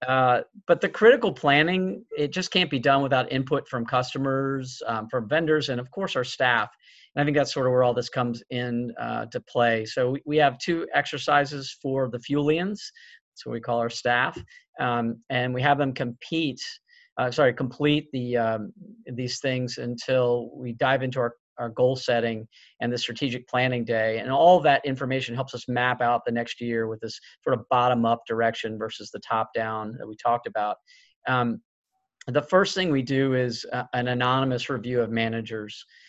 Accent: American